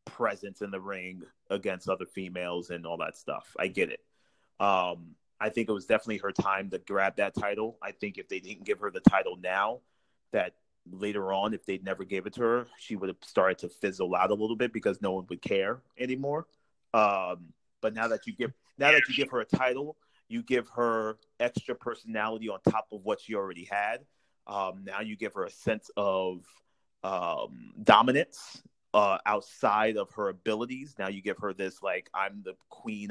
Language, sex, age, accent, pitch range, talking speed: English, male, 30-49, American, 100-135 Hz, 200 wpm